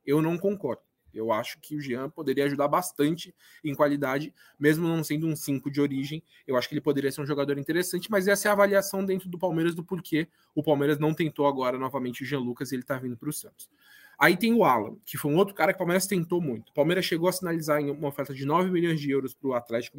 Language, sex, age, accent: Portuguese, male, 20-39, Brazilian